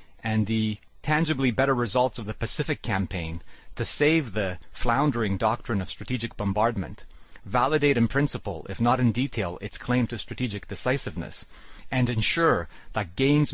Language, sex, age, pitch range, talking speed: English, male, 40-59, 100-130 Hz, 145 wpm